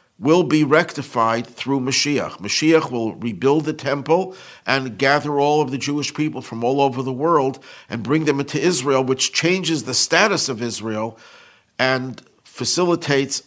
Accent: American